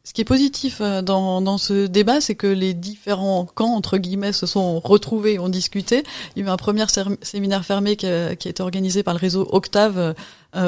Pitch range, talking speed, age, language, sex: 175-205 Hz, 230 wpm, 30-49, French, female